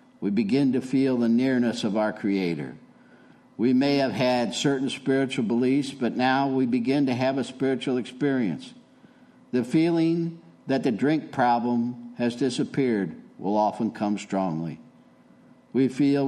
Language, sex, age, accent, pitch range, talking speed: English, male, 60-79, American, 110-130 Hz, 145 wpm